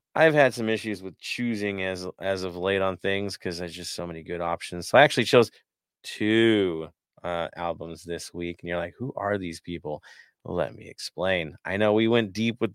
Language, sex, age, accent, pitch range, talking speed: English, male, 30-49, American, 95-120 Hz, 210 wpm